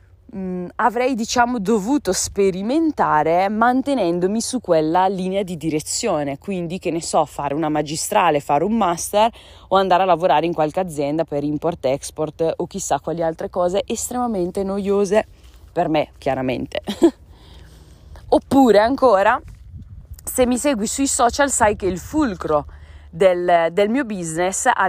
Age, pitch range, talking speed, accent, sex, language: 20-39, 160-235 Hz, 135 wpm, native, female, Italian